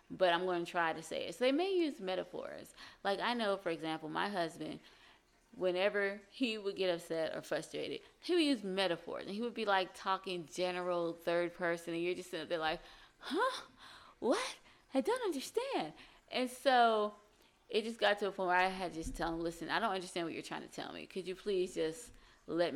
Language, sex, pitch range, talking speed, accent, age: English, female, 170-210 Hz, 215 wpm, American, 20-39